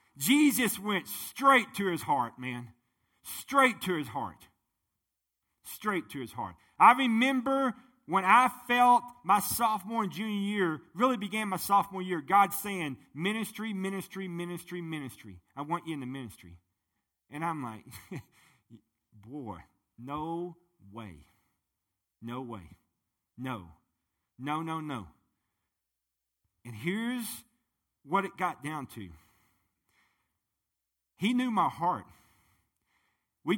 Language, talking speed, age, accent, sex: English, 120 wpm, 50-69, American, male